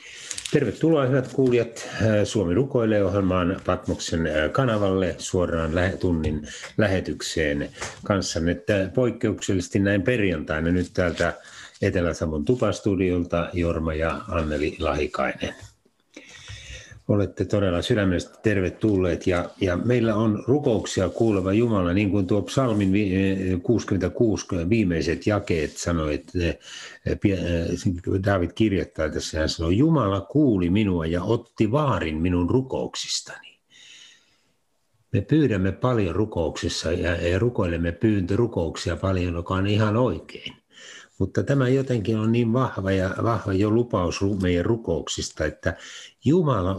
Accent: native